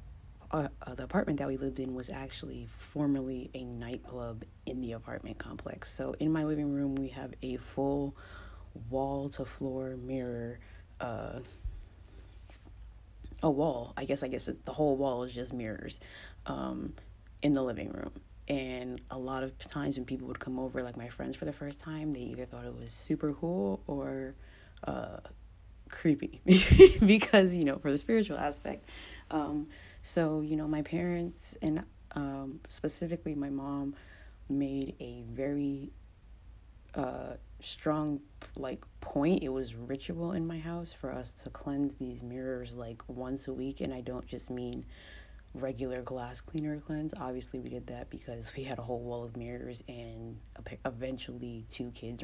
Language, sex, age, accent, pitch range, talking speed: English, female, 20-39, American, 115-140 Hz, 160 wpm